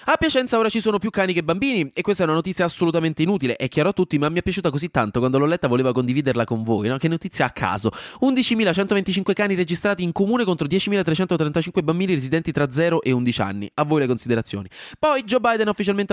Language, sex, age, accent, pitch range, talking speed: Italian, male, 20-39, native, 130-185 Hz, 225 wpm